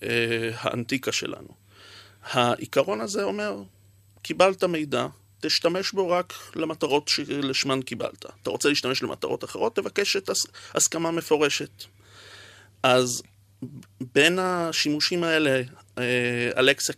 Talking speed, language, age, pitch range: 95 wpm, Hebrew, 30-49, 120-145 Hz